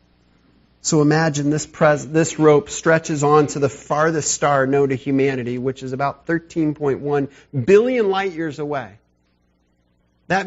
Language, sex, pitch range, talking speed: English, male, 105-155 Hz, 140 wpm